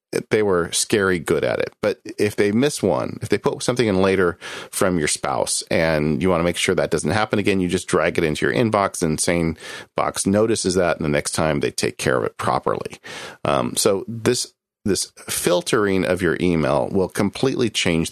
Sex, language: male, English